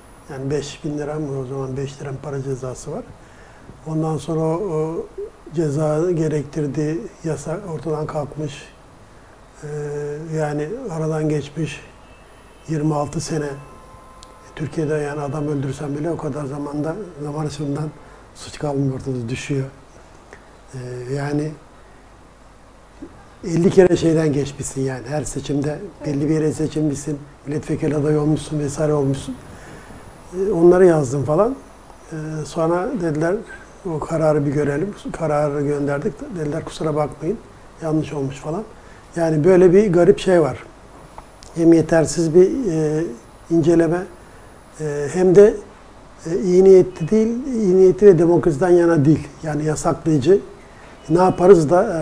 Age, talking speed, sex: 60-79, 110 wpm, male